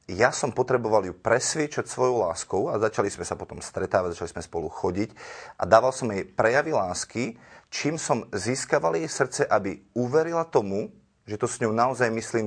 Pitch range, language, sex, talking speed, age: 105-125 Hz, Slovak, male, 180 wpm, 30-49